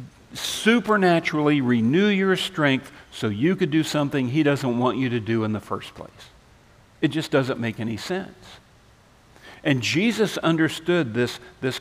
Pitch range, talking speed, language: 125-175 Hz, 150 wpm, English